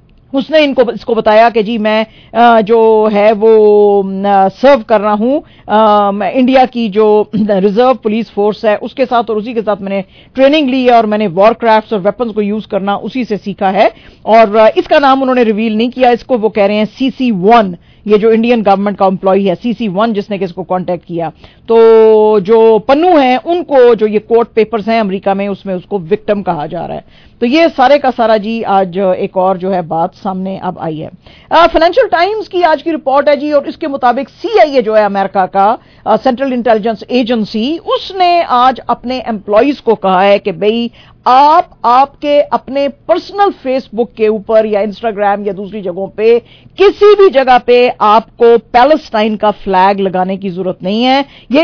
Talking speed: 185 wpm